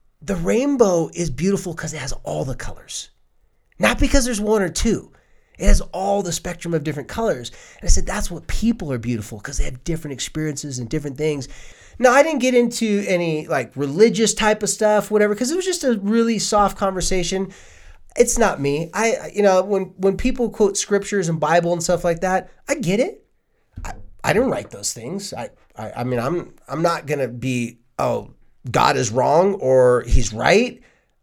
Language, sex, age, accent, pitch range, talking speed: English, male, 30-49, American, 140-200 Hz, 195 wpm